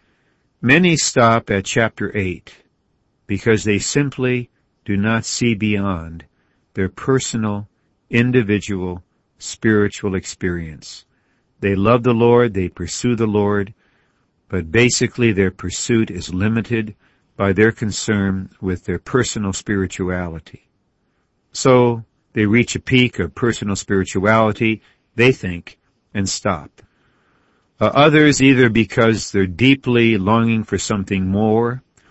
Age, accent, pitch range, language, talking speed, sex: 60-79, American, 100-120 Hz, English, 110 wpm, male